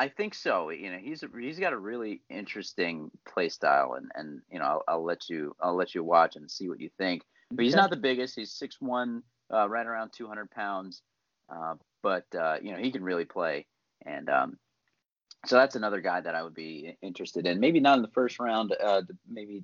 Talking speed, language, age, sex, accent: 215 wpm, English, 30-49, male, American